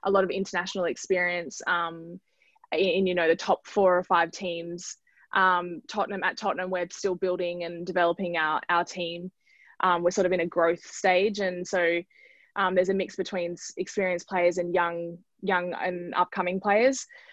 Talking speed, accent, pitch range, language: 175 wpm, Australian, 175-195 Hz, English